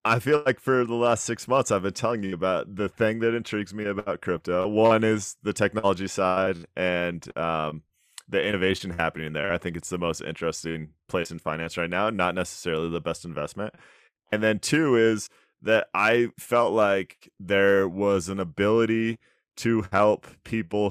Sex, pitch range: male, 90-110 Hz